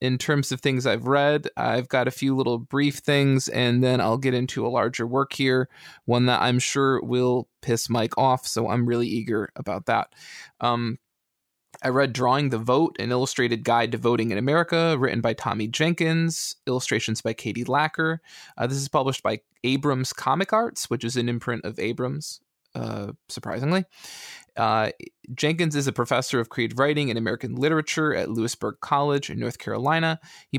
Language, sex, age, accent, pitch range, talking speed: English, male, 20-39, American, 120-140 Hz, 180 wpm